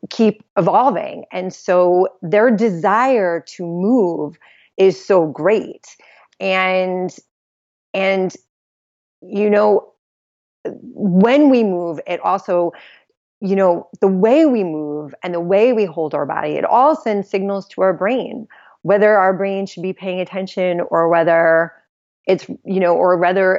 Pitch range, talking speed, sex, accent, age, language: 170-210 Hz, 135 wpm, female, American, 30-49, English